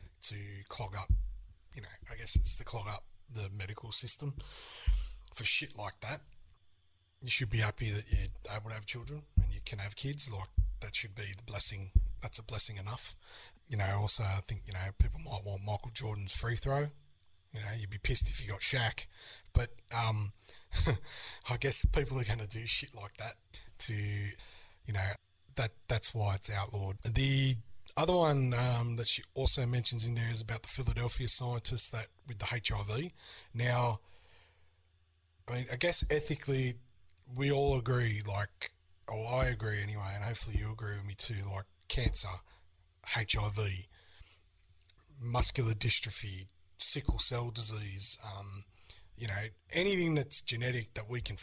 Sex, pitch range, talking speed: male, 95-120 Hz, 170 wpm